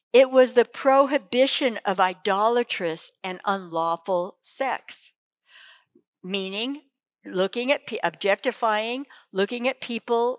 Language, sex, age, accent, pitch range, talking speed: English, female, 60-79, American, 180-245 Hz, 100 wpm